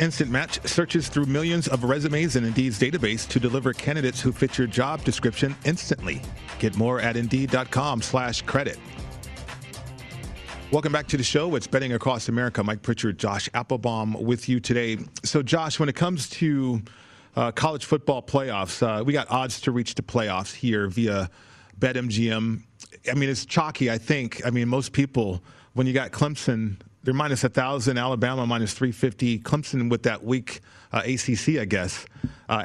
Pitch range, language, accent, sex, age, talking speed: 115-140 Hz, English, American, male, 40-59, 165 wpm